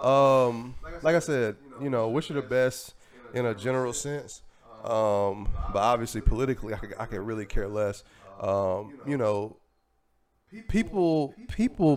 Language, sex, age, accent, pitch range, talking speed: English, male, 20-39, American, 110-160 Hz, 150 wpm